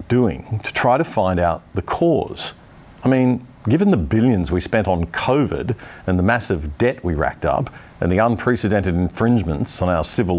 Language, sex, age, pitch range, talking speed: English, male, 50-69, 95-130 Hz, 180 wpm